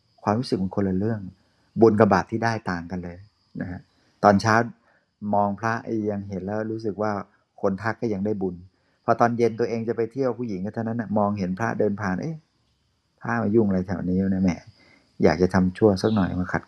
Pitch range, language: 95-115 Hz, Thai